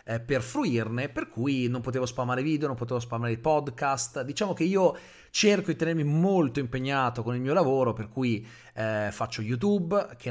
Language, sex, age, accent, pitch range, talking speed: Italian, male, 30-49, native, 115-150 Hz, 175 wpm